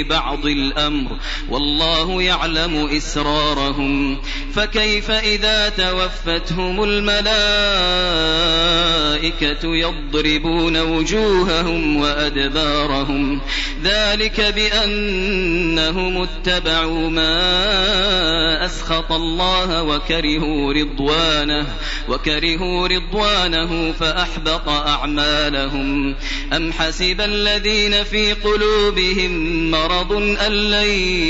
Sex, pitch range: male, 150-185 Hz